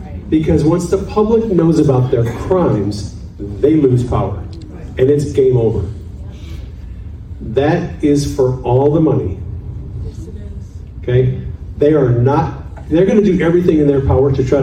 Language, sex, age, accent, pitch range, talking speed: English, male, 40-59, American, 95-145 Hz, 140 wpm